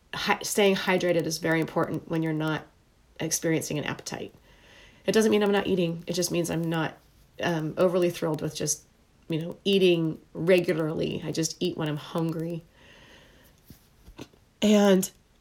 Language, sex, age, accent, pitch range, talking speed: English, female, 30-49, American, 165-185 Hz, 150 wpm